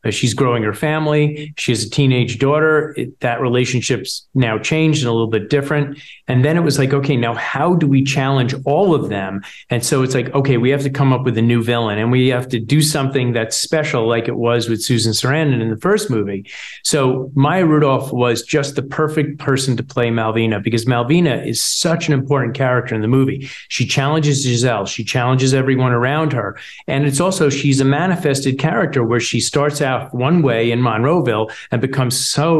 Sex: male